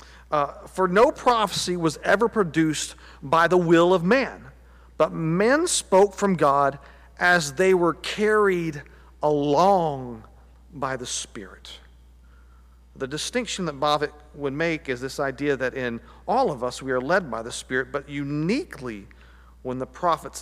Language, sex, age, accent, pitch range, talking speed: English, male, 40-59, American, 110-180 Hz, 145 wpm